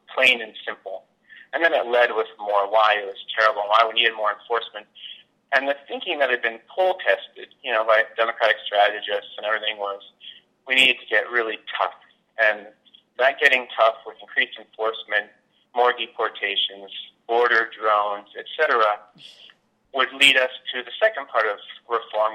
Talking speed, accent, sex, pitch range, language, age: 165 wpm, American, male, 105-130 Hz, English, 30-49